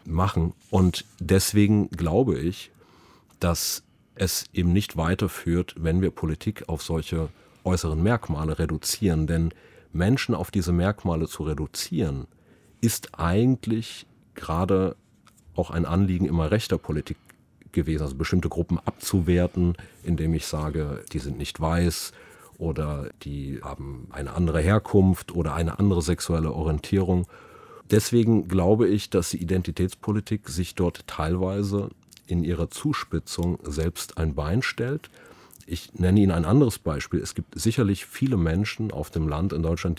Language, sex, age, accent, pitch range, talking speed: German, male, 40-59, German, 80-100 Hz, 135 wpm